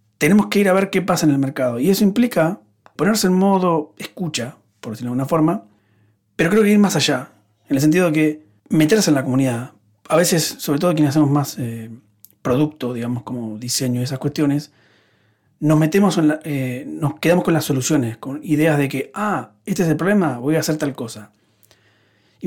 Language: Spanish